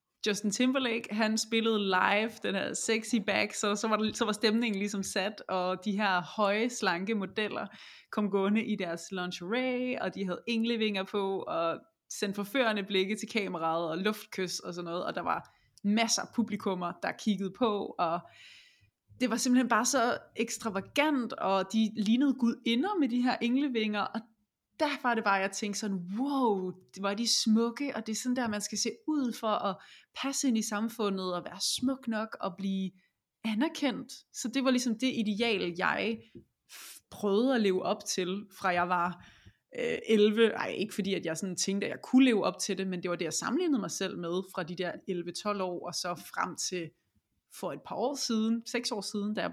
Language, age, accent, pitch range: Danish, 20-39, native, 190-235 Hz